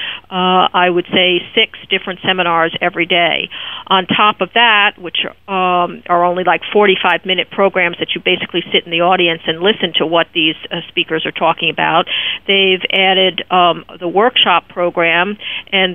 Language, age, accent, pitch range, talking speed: English, 50-69, American, 175-195 Hz, 165 wpm